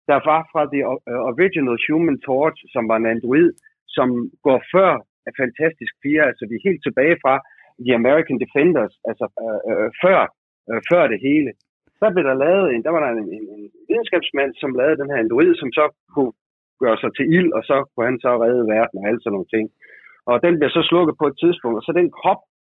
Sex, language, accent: male, Danish, native